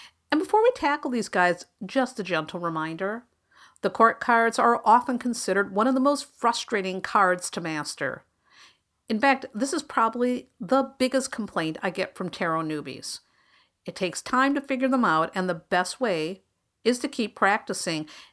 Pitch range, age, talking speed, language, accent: 185-255 Hz, 50-69, 170 wpm, English, American